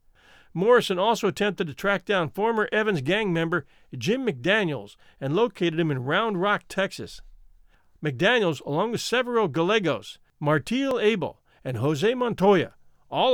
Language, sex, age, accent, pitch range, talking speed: English, male, 50-69, American, 150-210 Hz, 135 wpm